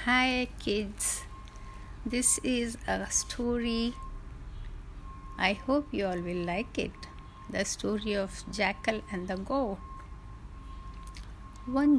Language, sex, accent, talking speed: Hindi, female, native, 105 wpm